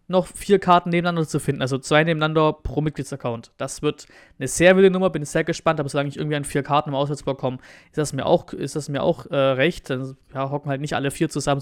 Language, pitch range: German, 130-155 Hz